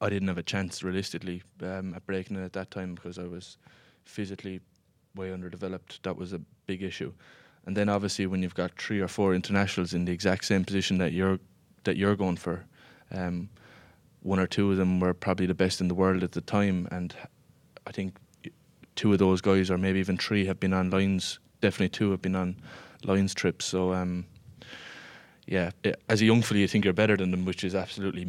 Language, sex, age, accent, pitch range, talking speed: English, male, 20-39, Irish, 90-100 Hz, 210 wpm